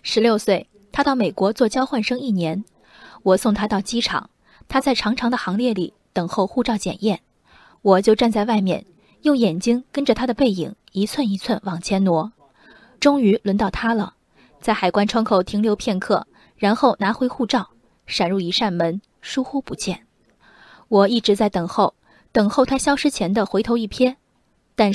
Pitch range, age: 195-240 Hz, 20-39